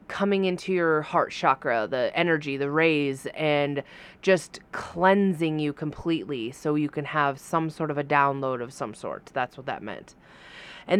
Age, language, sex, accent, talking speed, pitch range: 20-39, English, female, American, 170 wpm, 160-200 Hz